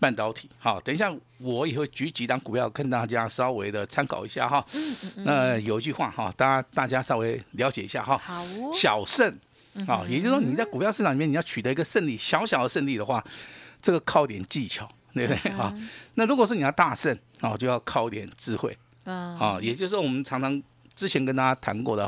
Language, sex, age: Chinese, male, 50-69